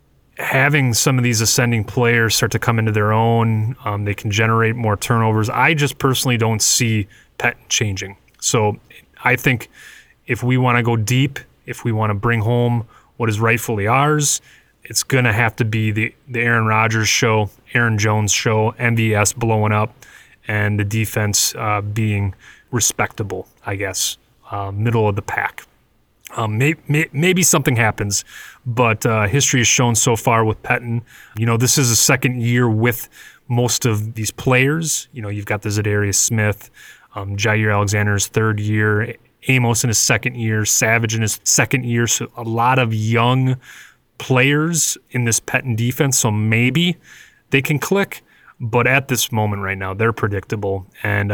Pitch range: 105-125 Hz